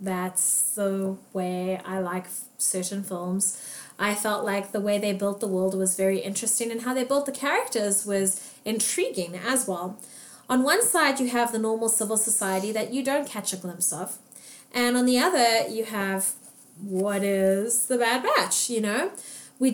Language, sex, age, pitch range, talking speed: English, female, 20-39, 200-255 Hz, 180 wpm